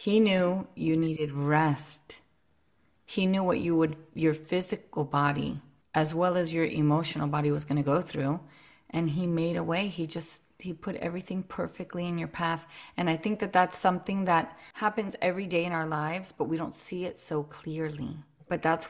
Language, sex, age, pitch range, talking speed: English, female, 30-49, 155-185 Hz, 185 wpm